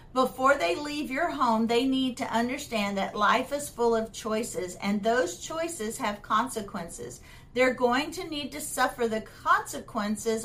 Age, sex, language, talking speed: 50-69, female, English, 160 wpm